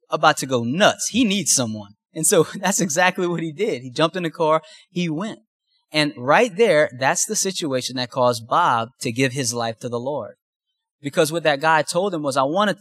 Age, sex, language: 20-39, male, English